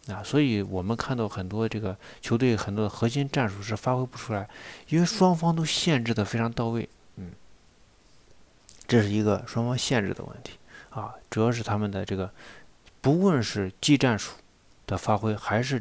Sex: male